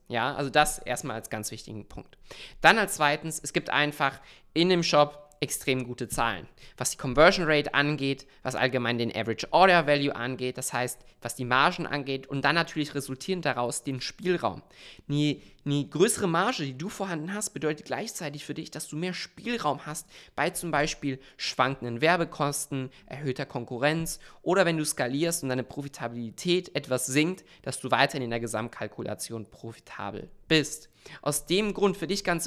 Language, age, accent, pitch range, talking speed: German, 20-39, German, 130-160 Hz, 170 wpm